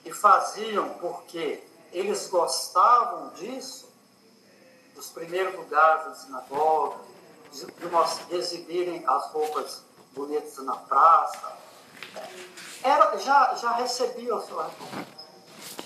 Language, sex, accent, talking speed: Portuguese, male, Brazilian, 95 wpm